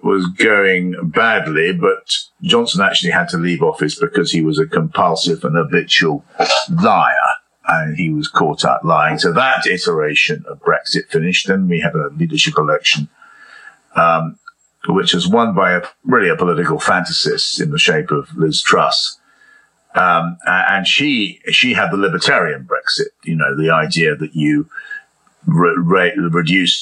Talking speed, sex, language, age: 150 wpm, male, English, 50-69